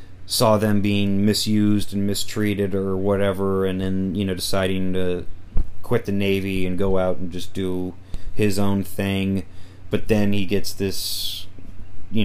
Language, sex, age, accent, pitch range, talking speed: English, male, 30-49, American, 95-100 Hz, 155 wpm